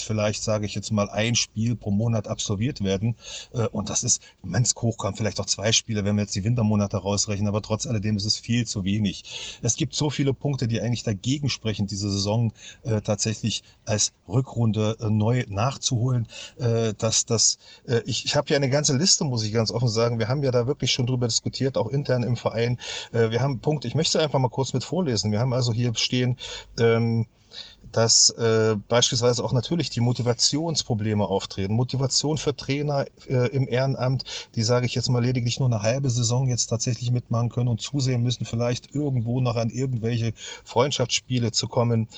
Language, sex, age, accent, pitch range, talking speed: German, male, 40-59, German, 110-130 Hz, 185 wpm